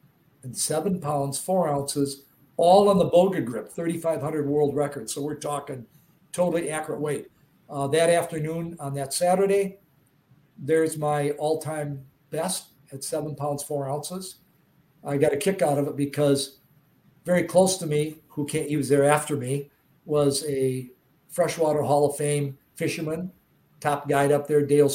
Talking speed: 155 wpm